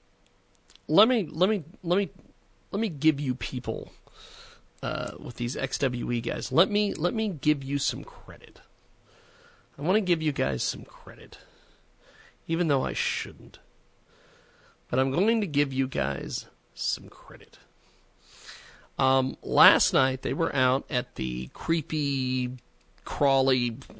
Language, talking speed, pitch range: English, 140 wpm, 115-155 Hz